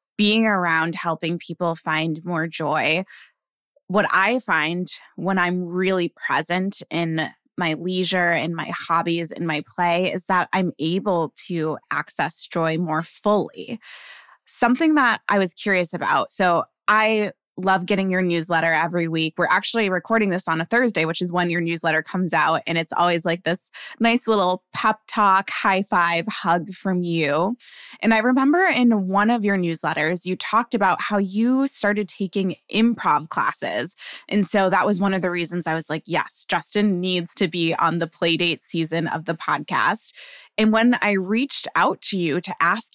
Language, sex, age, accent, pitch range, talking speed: English, female, 20-39, American, 170-210 Hz, 170 wpm